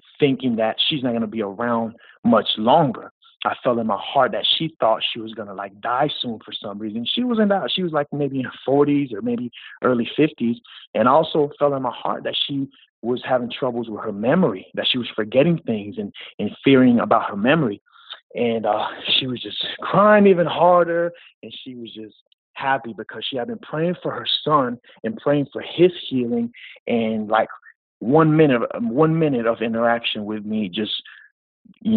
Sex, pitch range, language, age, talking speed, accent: male, 115-160 Hz, English, 30-49, 195 wpm, American